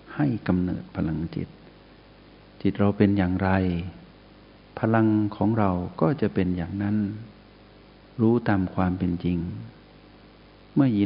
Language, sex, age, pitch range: Thai, male, 60-79, 95-110 Hz